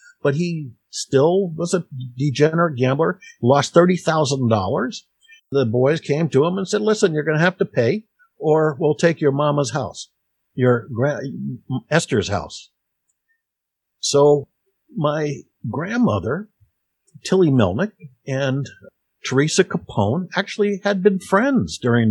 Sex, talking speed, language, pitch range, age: male, 120 wpm, English, 135-195 Hz, 60-79